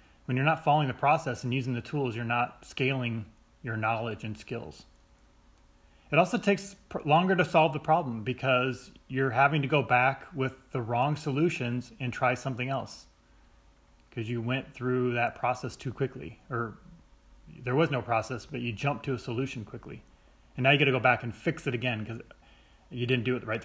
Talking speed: 195 wpm